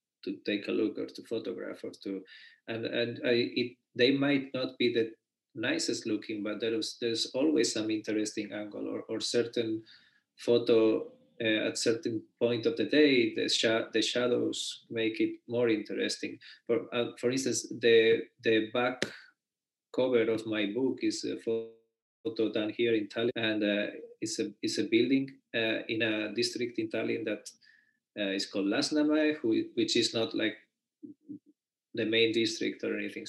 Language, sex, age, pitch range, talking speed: English, male, 20-39, 110-155 Hz, 170 wpm